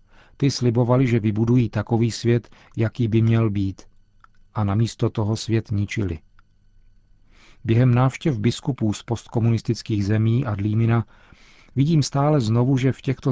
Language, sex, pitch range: Czech, male, 105-125 Hz